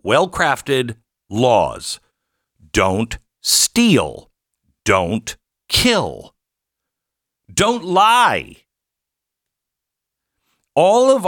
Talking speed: 60 wpm